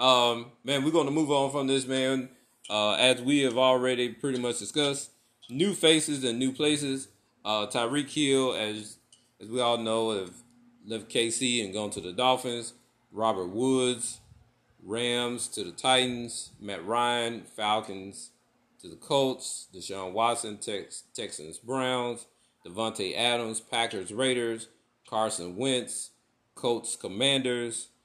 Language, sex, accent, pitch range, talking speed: English, male, American, 110-130 Hz, 135 wpm